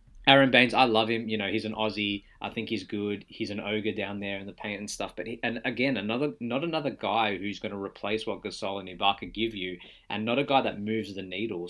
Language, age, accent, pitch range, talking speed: English, 20-39, Australian, 100-115 Hz, 255 wpm